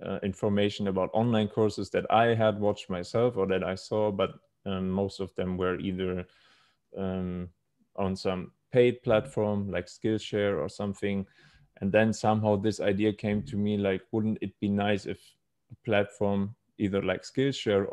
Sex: male